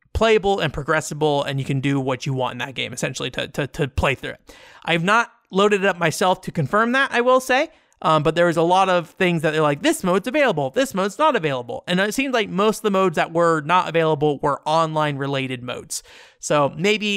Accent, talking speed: American, 240 wpm